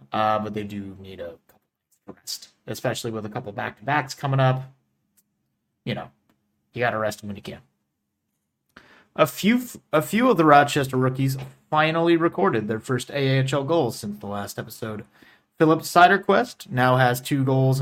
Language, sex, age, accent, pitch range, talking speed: English, male, 30-49, American, 110-145 Hz, 160 wpm